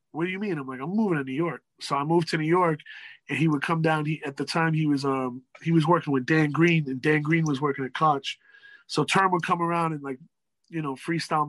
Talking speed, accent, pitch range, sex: 270 wpm, American, 140-170 Hz, male